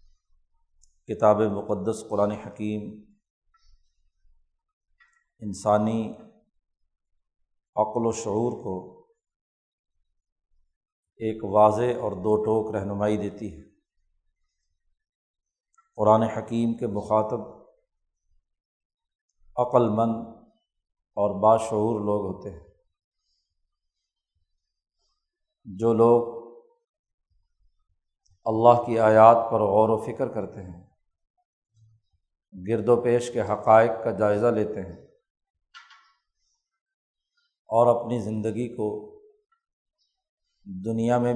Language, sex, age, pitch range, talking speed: Urdu, male, 50-69, 105-125 Hz, 75 wpm